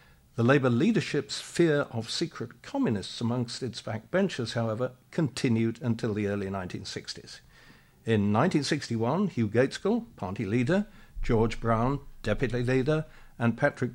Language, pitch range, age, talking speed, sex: English, 105-130 Hz, 60-79, 120 wpm, male